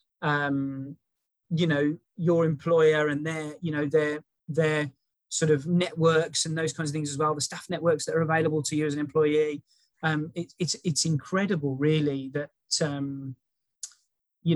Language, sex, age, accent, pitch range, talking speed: English, male, 20-39, British, 145-175 Hz, 165 wpm